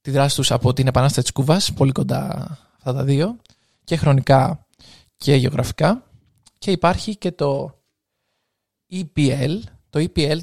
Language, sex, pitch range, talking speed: Greek, male, 135-165 Hz, 130 wpm